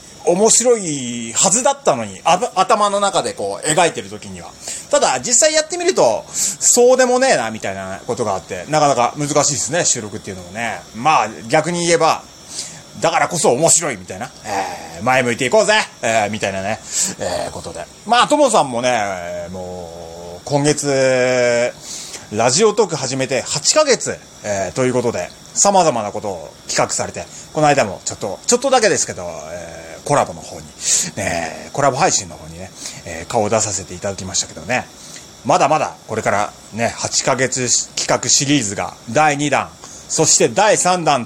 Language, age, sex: Japanese, 30-49, male